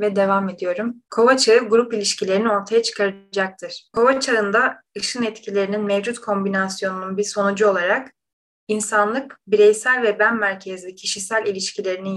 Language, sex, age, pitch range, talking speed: Turkish, female, 30-49, 195-230 Hz, 125 wpm